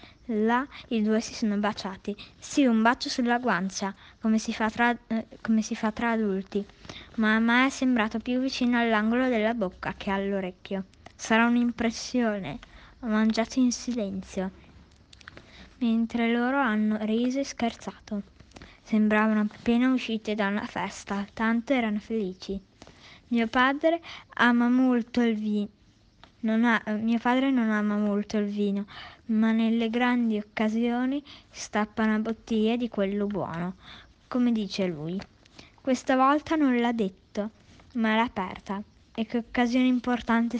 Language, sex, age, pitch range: Italian, female, 20-39, 210-245 Hz